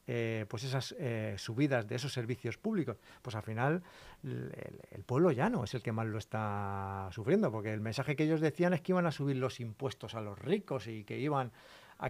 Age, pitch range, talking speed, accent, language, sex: 40-59, 110-135 Hz, 220 wpm, Spanish, Spanish, male